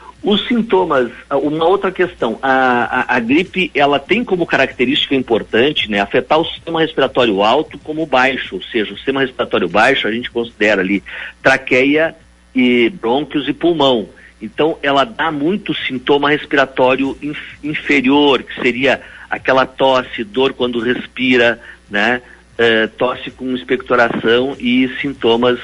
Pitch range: 120-155 Hz